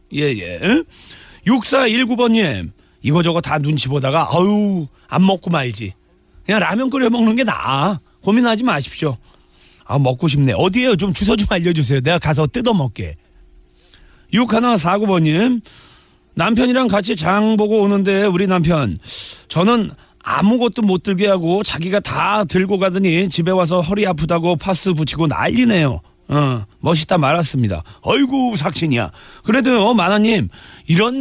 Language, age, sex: Korean, 40-59, male